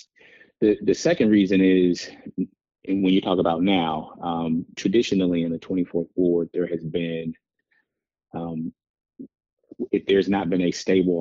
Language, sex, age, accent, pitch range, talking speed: English, male, 30-49, American, 85-95 Hz, 145 wpm